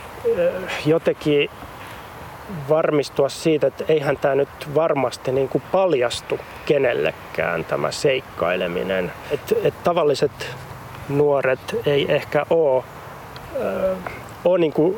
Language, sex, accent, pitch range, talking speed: Finnish, male, native, 130-150 Hz, 90 wpm